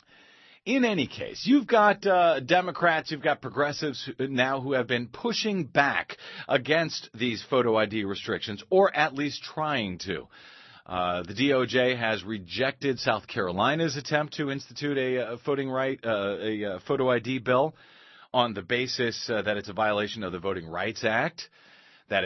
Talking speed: 160 wpm